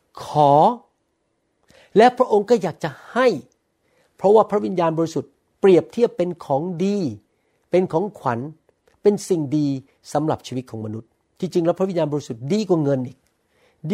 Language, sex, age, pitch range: Thai, male, 60-79, 130-185 Hz